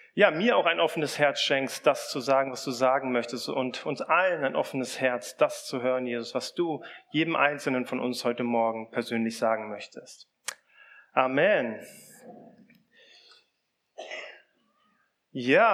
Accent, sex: German, male